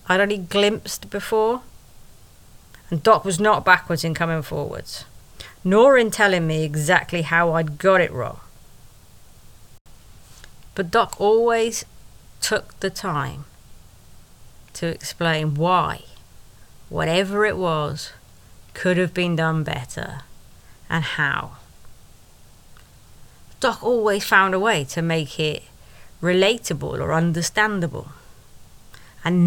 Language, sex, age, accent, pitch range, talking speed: English, female, 30-49, British, 140-180 Hz, 110 wpm